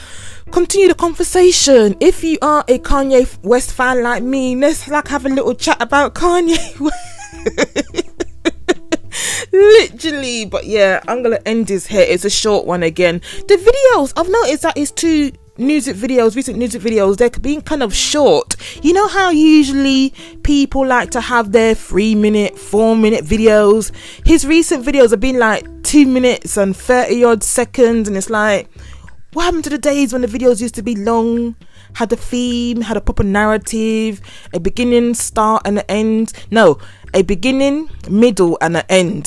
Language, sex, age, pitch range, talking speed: English, female, 20-39, 205-285 Hz, 170 wpm